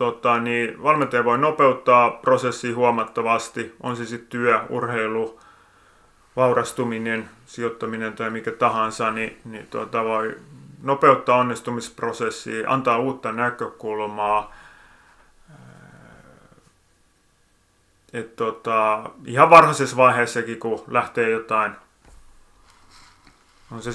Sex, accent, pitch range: male, native, 110-125 Hz